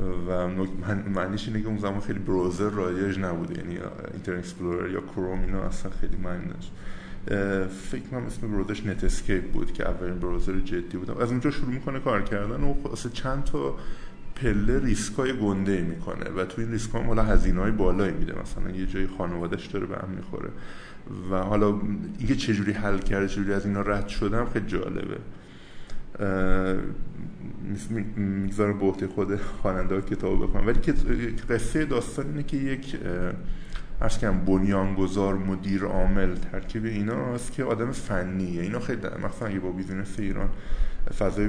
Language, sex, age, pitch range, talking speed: Persian, male, 20-39, 95-110 Hz, 145 wpm